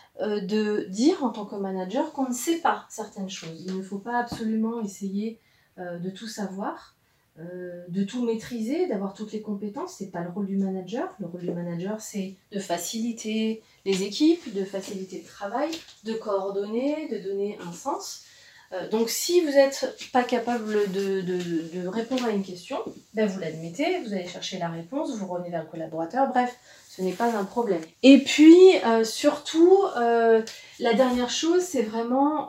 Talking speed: 180 wpm